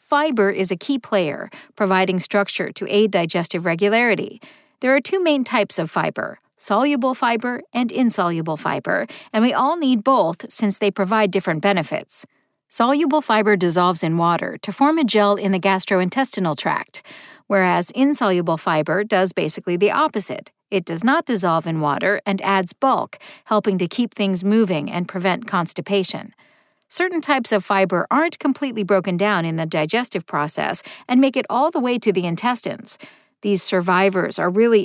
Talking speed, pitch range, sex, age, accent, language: 165 wpm, 185-255 Hz, female, 50-69, American, English